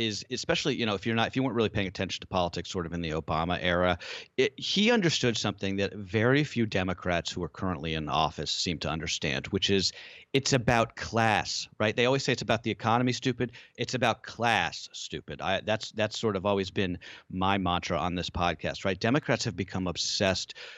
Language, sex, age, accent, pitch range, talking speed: English, male, 40-59, American, 90-125 Hz, 210 wpm